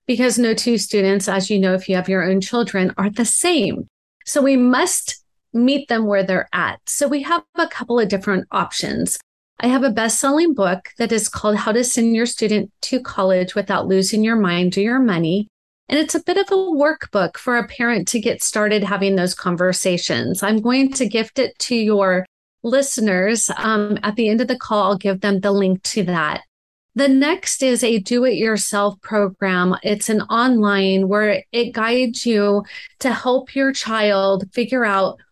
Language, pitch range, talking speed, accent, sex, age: English, 195-250 Hz, 190 wpm, American, female, 30-49